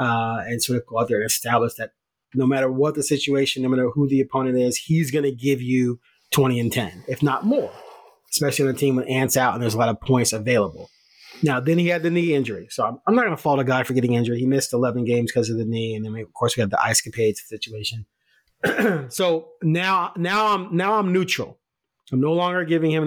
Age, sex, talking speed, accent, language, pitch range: 30-49, male, 250 wpm, American, English, 130-185 Hz